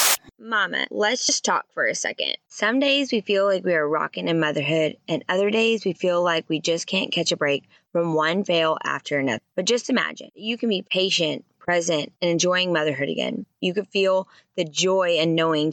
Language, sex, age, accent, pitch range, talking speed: English, female, 20-39, American, 160-200 Hz, 200 wpm